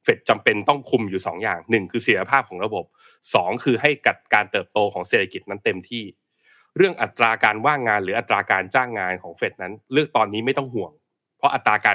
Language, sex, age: Thai, male, 20-39